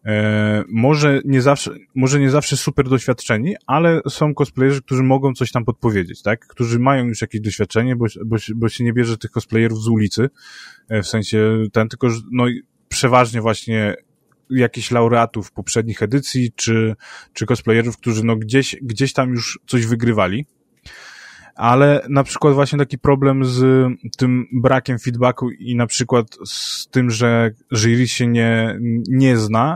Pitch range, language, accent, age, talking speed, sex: 110-130 Hz, Polish, native, 20-39, 150 wpm, male